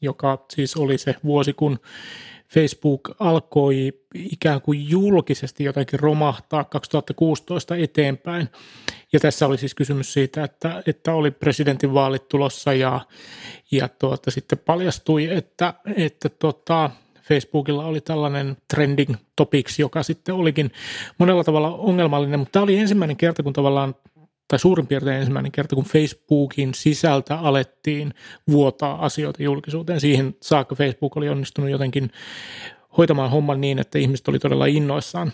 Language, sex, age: Finnish, male, 30-49